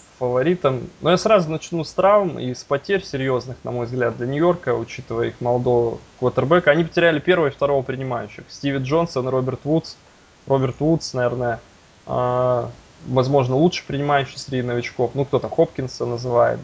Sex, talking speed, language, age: male, 155 wpm, Russian, 20-39